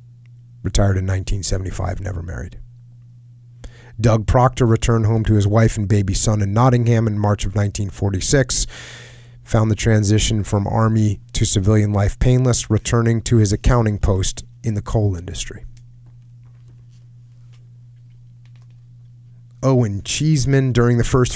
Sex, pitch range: male, 105-120 Hz